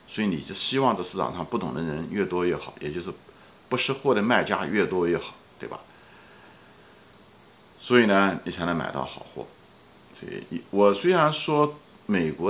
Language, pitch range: Chinese, 85-120 Hz